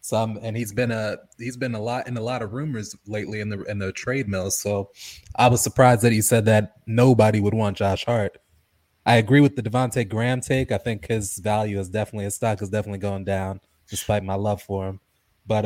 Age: 20-39